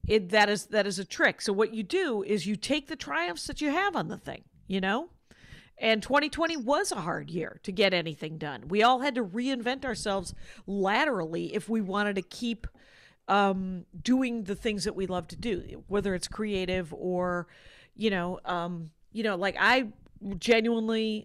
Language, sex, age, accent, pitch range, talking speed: English, female, 50-69, American, 190-255 Hz, 190 wpm